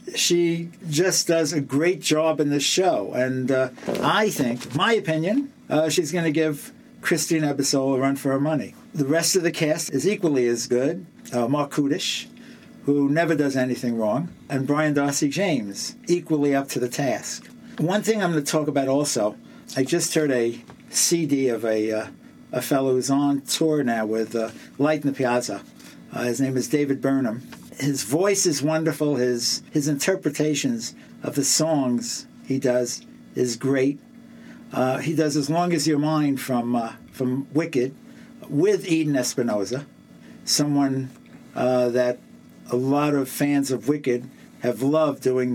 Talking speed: 165 wpm